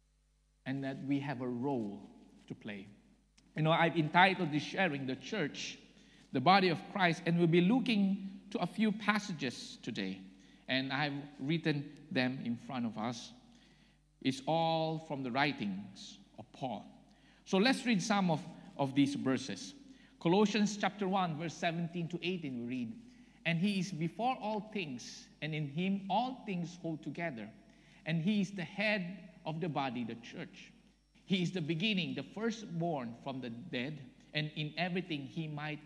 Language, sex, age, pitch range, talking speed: English, male, 50-69, 150-200 Hz, 165 wpm